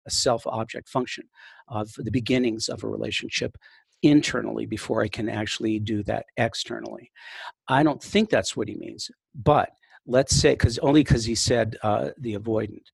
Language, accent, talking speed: English, American, 160 wpm